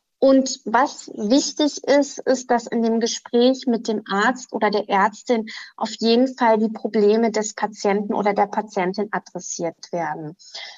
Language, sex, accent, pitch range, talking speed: German, female, German, 205-250 Hz, 150 wpm